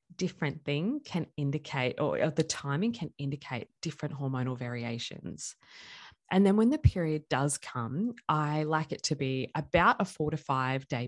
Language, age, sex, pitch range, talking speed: English, 20-39, female, 125-150 Hz, 165 wpm